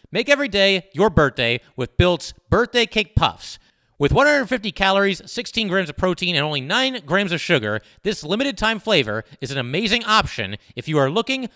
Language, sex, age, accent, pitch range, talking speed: English, male, 30-49, American, 135-210 Hz, 175 wpm